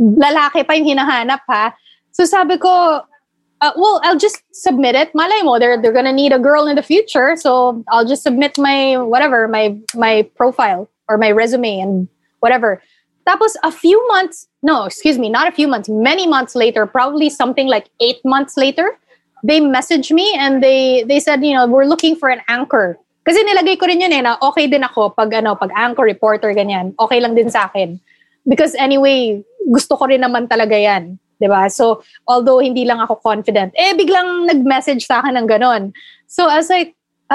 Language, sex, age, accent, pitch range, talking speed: English, female, 20-39, Filipino, 240-325 Hz, 195 wpm